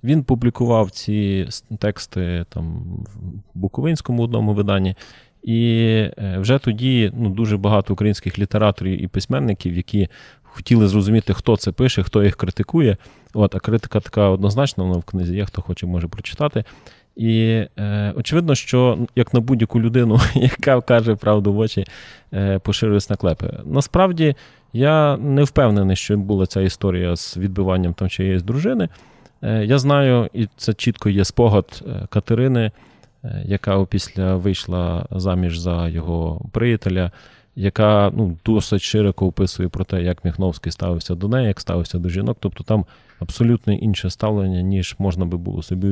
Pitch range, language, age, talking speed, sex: 95-115 Hz, Ukrainian, 20-39, 150 wpm, male